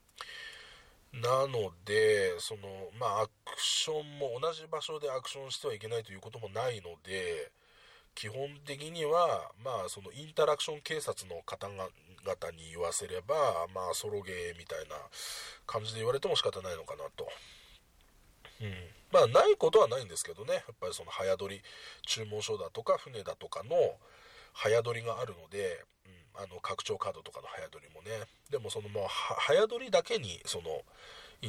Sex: male